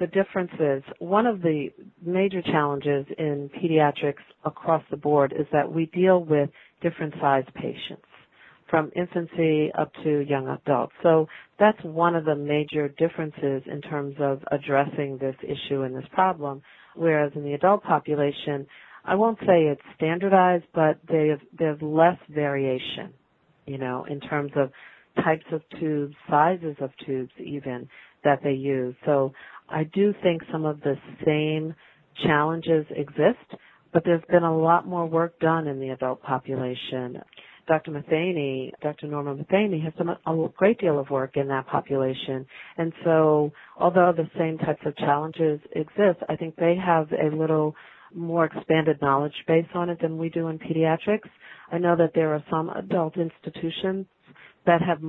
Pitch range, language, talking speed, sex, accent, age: 145-170 Hz, English, 160 wpm, female, American, 40-59